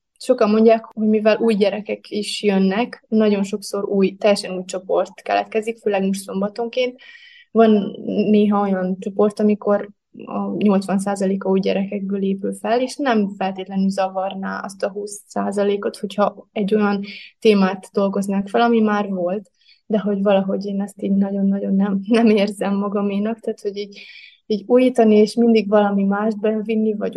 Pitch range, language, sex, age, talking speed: 195-215 Hz, Hungarian, female, 20-39, 145 wpm